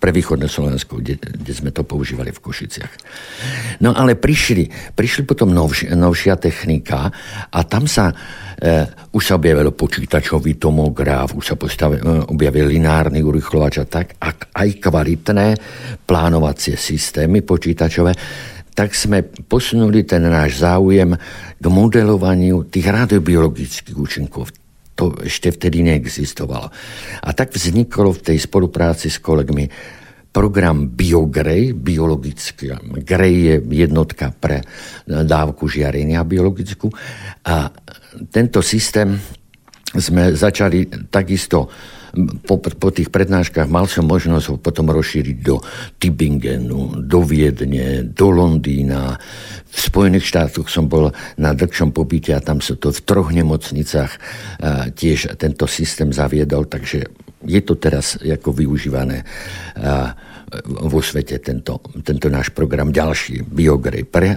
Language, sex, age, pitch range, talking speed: Slovak, male, 60-79, 75-95 Hz, 120 wpm